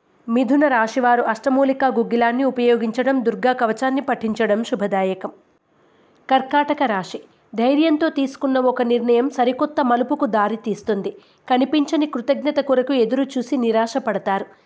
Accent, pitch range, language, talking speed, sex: native, 230-275 Hz, Telugu, 100 wpm, female